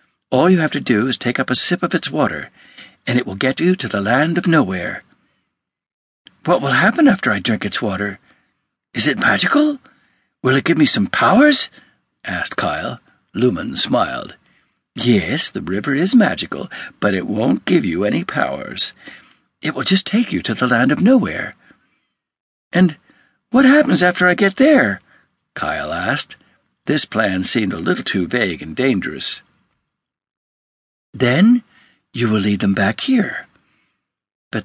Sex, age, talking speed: male, 60-79, 160 wpm